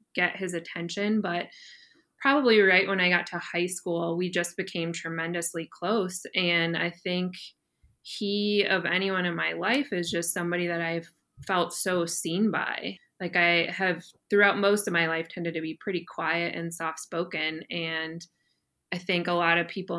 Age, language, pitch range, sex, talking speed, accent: 20-39, English, 170-195 Hz, female, 170 wpm, American